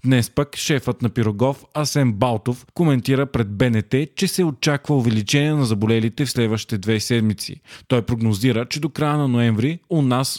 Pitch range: 115-140 Hz